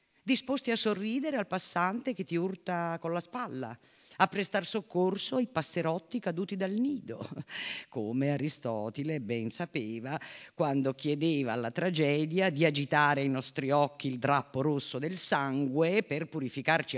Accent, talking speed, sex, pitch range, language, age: native, 140 wpm, female, 125-175 Hz, Italian, 50-69